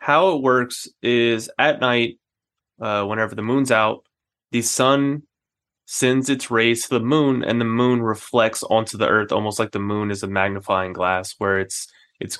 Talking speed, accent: 180 wpm, American